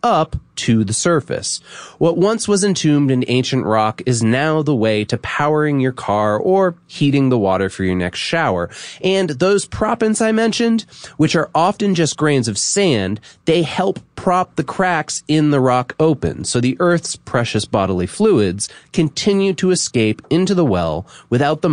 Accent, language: American, English